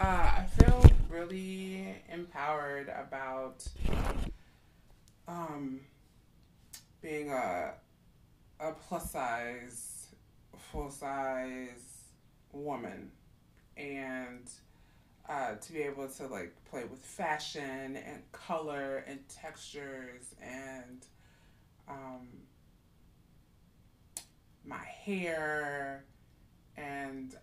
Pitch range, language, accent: 130-155 Hz, English, American